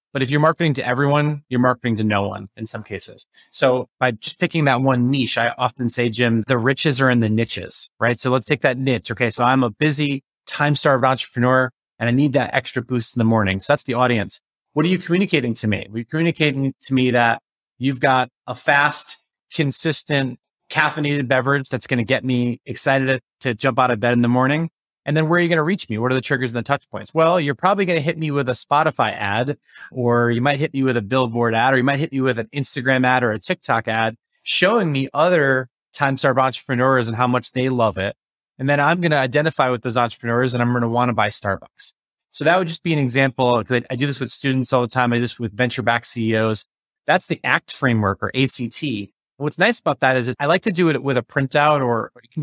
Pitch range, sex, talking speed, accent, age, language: 120-145 Hz, male, 245 wpm, American, 30-49, English